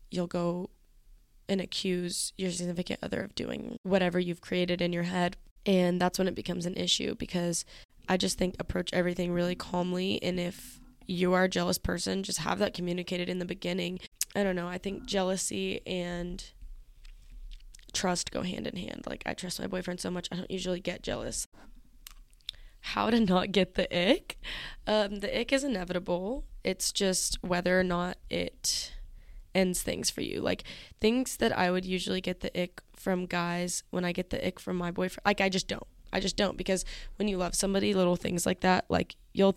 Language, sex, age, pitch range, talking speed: English, female, 10-29, 175-195 Hz, 190 wpm